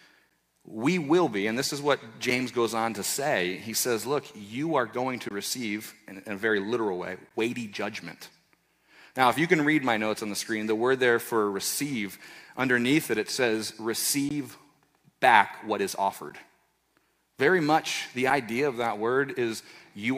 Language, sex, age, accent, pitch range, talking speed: English, male, 40-59, American, 120-170 Hz, 180 wpm